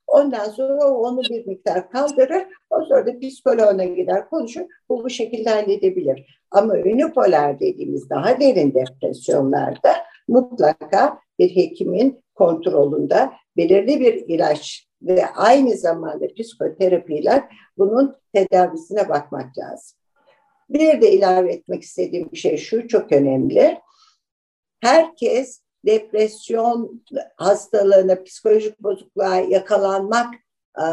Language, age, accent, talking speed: Turkish, 60-79, native, 100 wpm